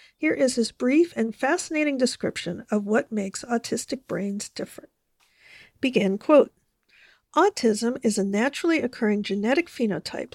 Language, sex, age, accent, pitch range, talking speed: English, female, 50-69, American, 215-275 Hz, 130 wpm